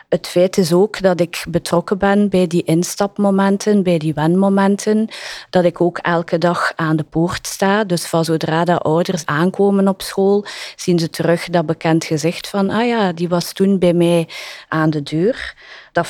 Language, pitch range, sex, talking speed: English, 165-195 Hz, female, 185 wpm